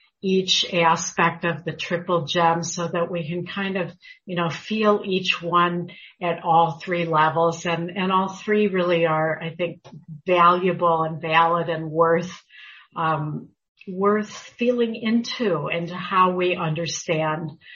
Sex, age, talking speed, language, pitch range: female, 50-69, 145 wpm, English, 165-200 Hz